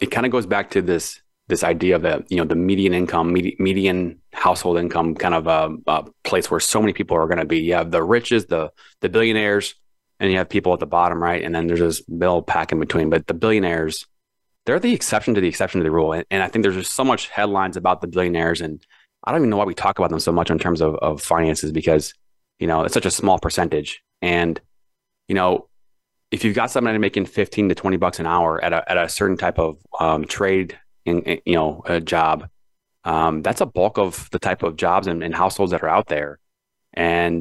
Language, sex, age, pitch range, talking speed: English, male, 20-39, 80-95 Hz, 240 wpm